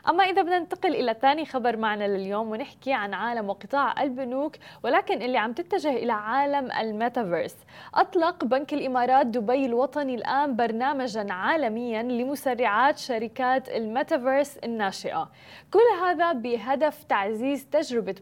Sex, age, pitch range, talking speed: female, 20-39, 235-285 Hz, 125 wpm